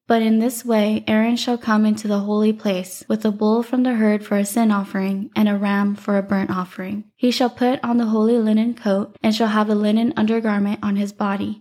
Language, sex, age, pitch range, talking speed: English, female, 10-29, 205-225 Hz, 235 wpm